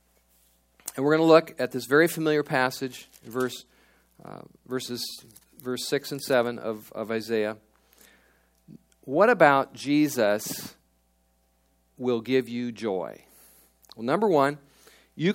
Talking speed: 115 wpm